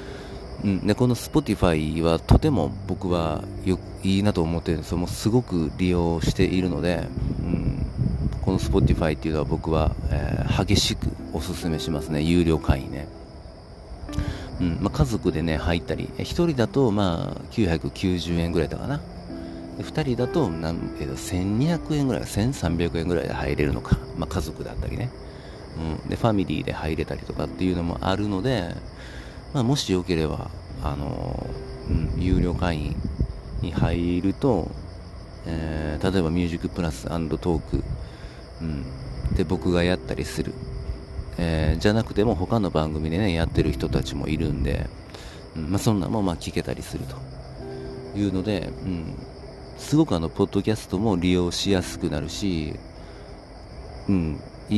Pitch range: 80-95 Hz